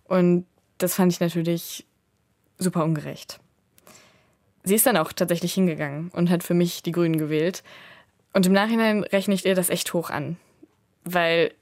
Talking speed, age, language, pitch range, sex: 160 wpm, 20-39, German, 170-195 Hz, female